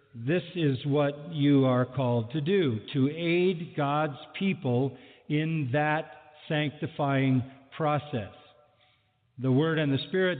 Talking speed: 120 wpm